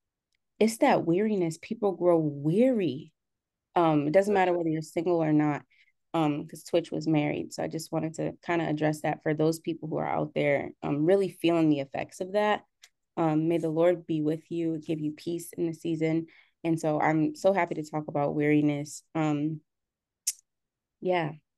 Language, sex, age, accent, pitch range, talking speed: English, female, 20-39, American, 155-195 Hz, 185 wpm